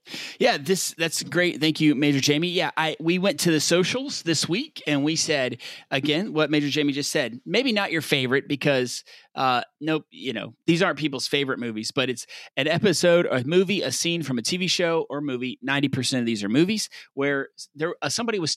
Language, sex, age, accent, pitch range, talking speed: English, male, 30-49, American, 135-175 Hz, 215 wpm